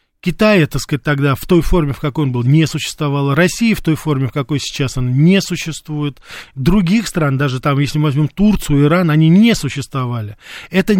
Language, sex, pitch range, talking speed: Russian, male, 145-185 Hz, 195 wpm